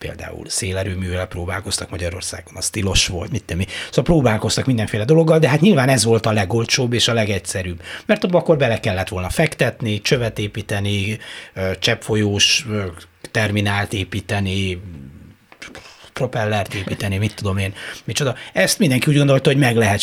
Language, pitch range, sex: Hungarian, 105-130 Hz, male